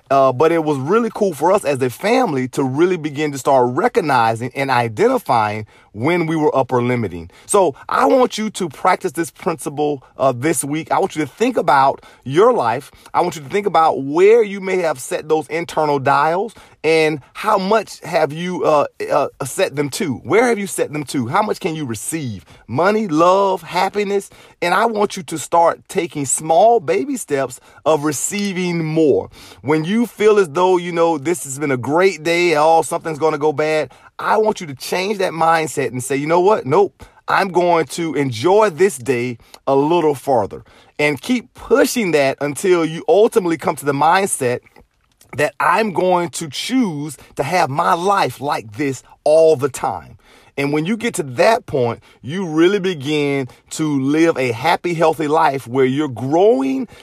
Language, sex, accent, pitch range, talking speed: English, male, American, 140-185 Hz, 185 wpm